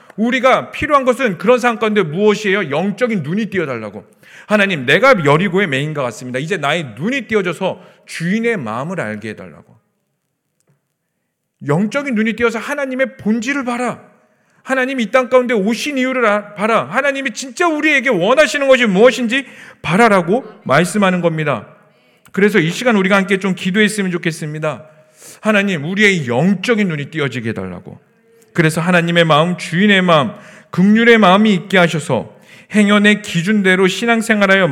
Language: Korean